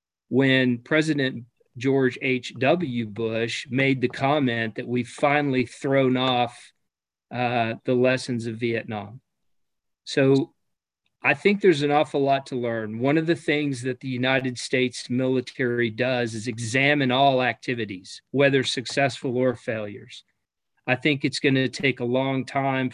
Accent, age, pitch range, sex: American, 40-59, 120-140 Hz, male